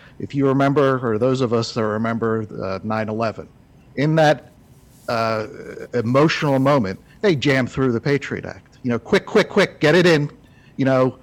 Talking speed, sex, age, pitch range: 170 wpm, male, 50-69, 125-170 Hz